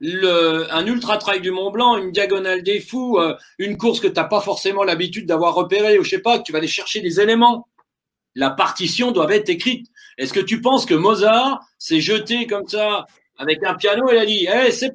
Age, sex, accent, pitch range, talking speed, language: 40-59, male, French, 185-260 Hz, 220 wpm, French